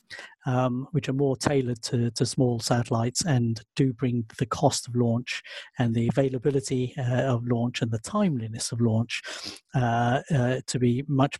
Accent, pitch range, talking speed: British, 120-145 Hz, 170 wpm